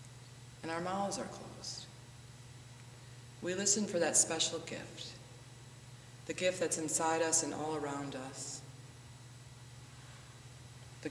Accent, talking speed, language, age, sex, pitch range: American, 115 wpm, English, 30-49, female, 125-150 Hz